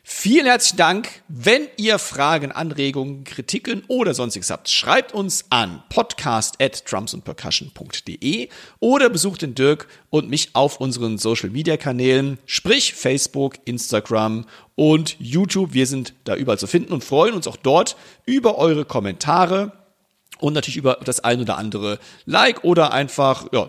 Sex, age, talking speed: male, 50-69, 135 wpm